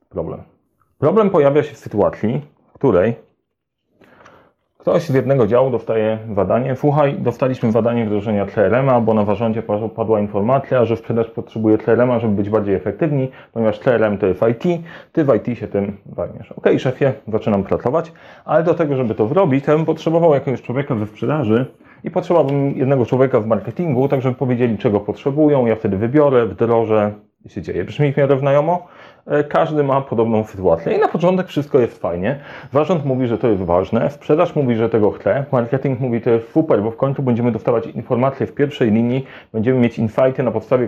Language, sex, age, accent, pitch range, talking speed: Polish, male, 30-49, native, 115-145 Hz, 180 wpm